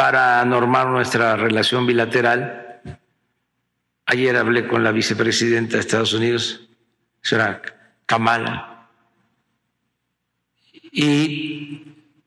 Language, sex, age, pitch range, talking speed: Spanish, male, 60-79, 110-130 Hz, 80 wpm